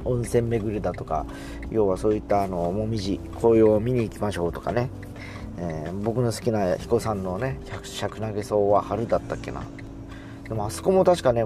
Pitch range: 85-135 Hz